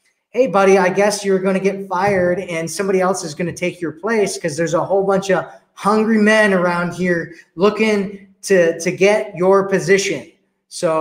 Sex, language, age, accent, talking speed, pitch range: male, English, 20-39, American, 190 wpm, 160-195 Hz